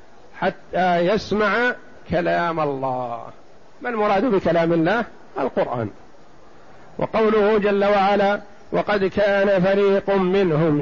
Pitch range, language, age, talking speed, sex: 180-215 Hz, Arabic, 50-69, 90 wpm, male